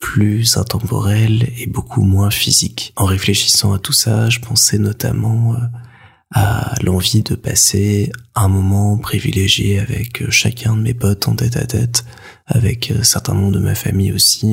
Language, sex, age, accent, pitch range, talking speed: French, male, 20-39, French, 100-120 Hz, 155 wpm